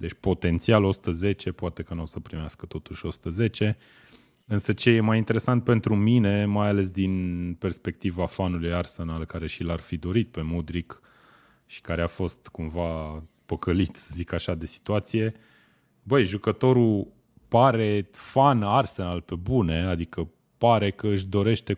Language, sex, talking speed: Romanian, male, 150 wpm